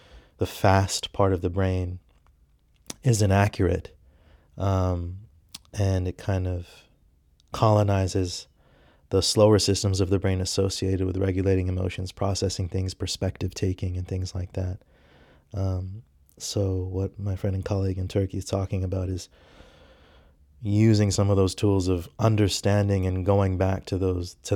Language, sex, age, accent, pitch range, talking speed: English, male, 30-49, American, 90-100 Hz, 140 wpm